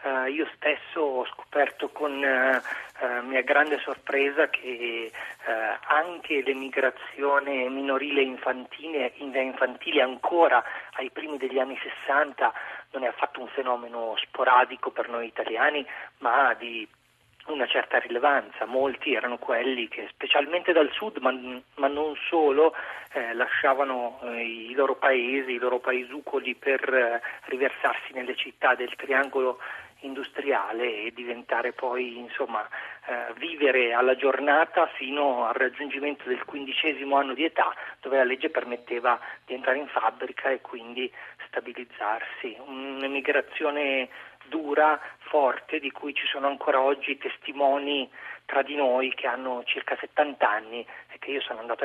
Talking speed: 130 wpm